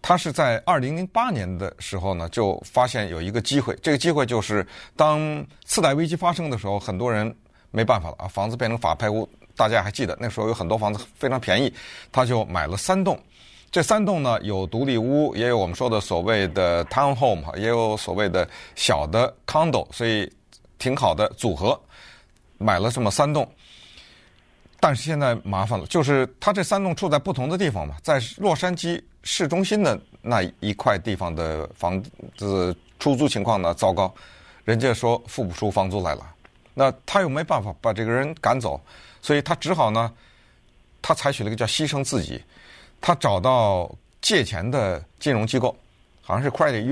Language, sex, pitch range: Chinese, male, 95-145 Hz